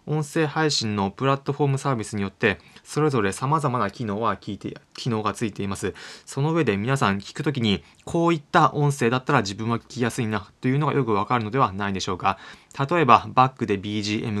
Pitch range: 105-140 Hz